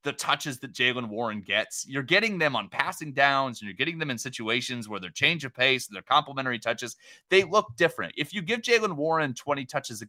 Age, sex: 30-49, male